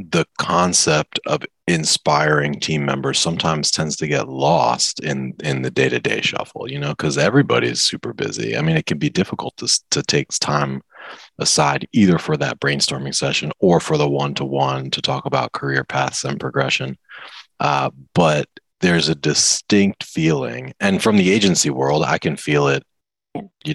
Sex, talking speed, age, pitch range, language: male, 165 wpm, 30-49, 70-80 Hz, English